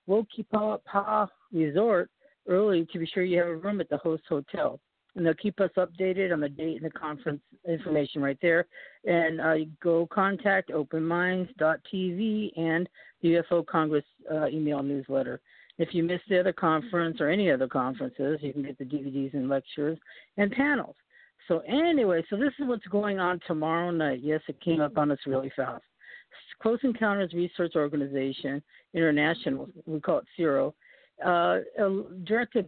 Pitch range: 150-185 Hz